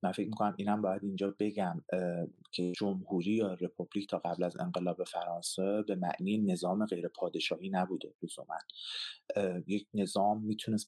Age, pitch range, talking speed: 30-49, 90-110 Hz, 140 wpm